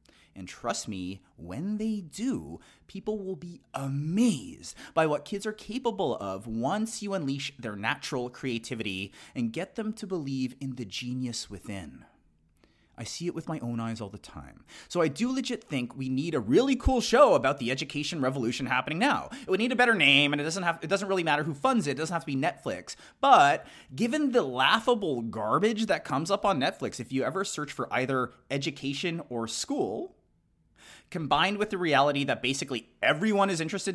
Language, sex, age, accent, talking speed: English, male, 30-49, American, 195 wpm